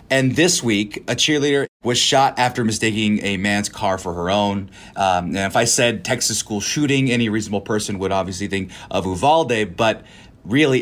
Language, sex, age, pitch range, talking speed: English, male, 30-49, 95-120 Hz, 185 wpm